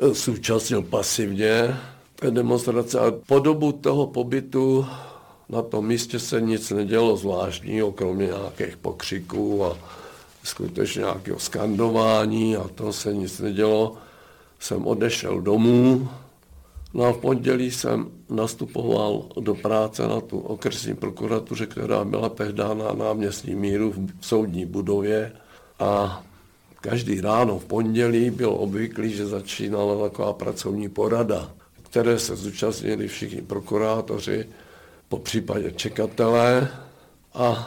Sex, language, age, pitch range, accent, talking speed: male, Czech, 60-79, 100-120 Hz, native, 120 wpm